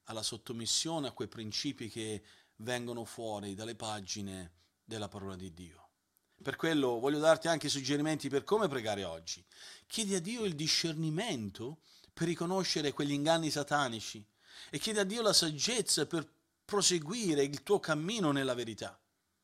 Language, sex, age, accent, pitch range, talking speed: Italian, male, 40-59, native, 115-165 Hz, 145 wpm